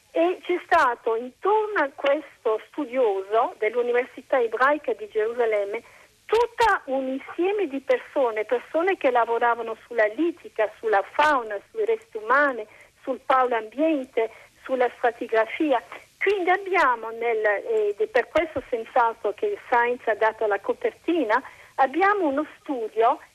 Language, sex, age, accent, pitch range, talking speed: Italian, female, 50-69, native, 240-365 Hz, 130 wpm